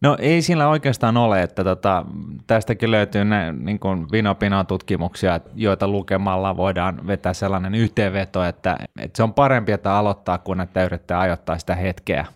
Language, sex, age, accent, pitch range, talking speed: Finnish, male, 20-39, native, 90-105 Hz, 150 wpm